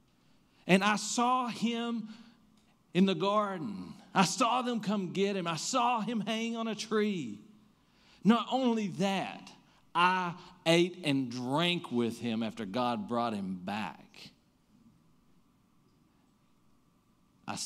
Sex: male